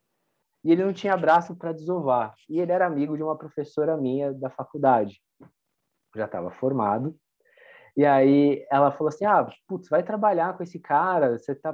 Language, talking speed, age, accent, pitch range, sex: Portuguese, 180 wpm, 20-39, Brazilian, 115-155 Hz, male